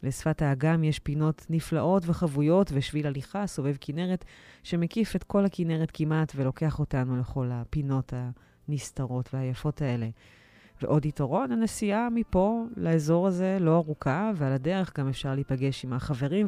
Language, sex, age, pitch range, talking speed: Hebrew, female, 30-49, 125-160 Hz, 135 wpm